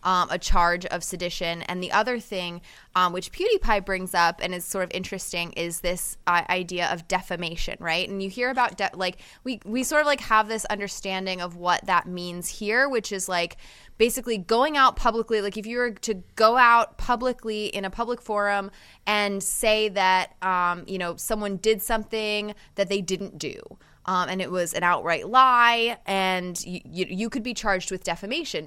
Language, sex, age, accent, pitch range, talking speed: English, female, 20-39, American, 180-225 Hz, 195 wpm